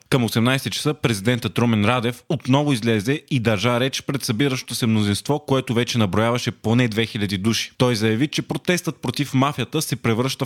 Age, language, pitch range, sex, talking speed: 20-39, Bulgarian, 115-135 Hz, male, 165 wpm